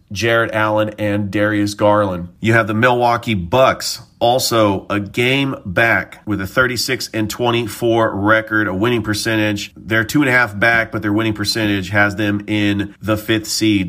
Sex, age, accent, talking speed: male, 40-59, American, 165 wpm